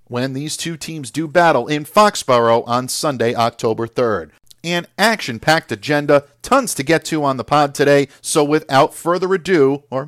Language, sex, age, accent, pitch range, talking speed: English, male, 40-59, American, 125-165 Hz, 165 wpm